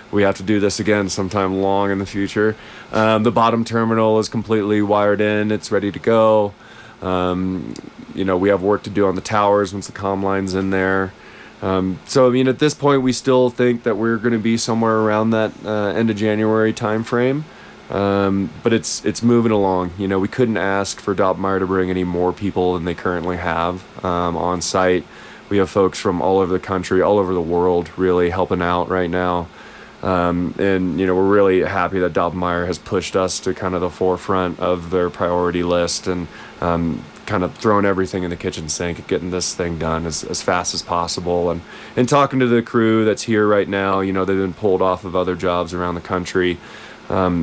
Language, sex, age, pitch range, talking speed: English, male, 20-39, 90-105 Hz, 215 wpm